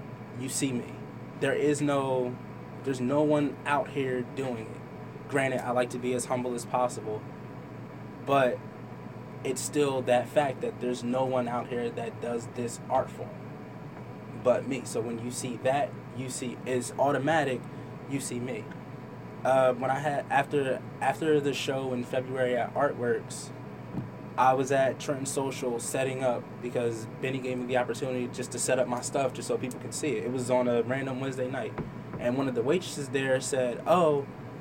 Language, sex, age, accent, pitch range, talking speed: English, male, 20-39, American, 125-145 Hz, 180 wpm